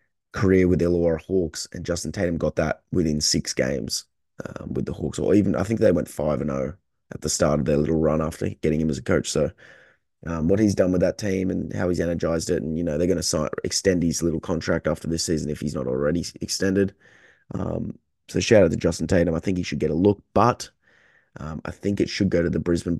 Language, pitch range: English, 85-95 Hz